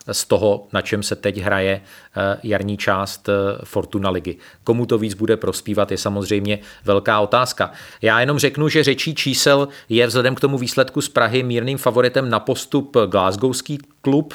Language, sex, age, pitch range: Czech, male, 40-59, 105-125 Hz